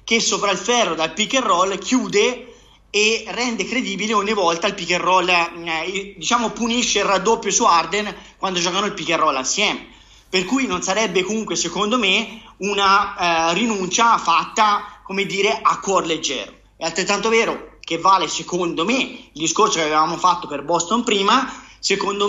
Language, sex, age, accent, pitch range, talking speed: Italian, male, 30-49, native, 175-235 Hz, 170 wpm